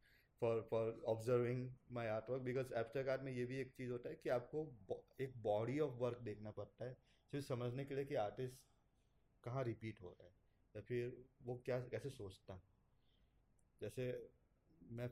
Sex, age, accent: male, 20-39, native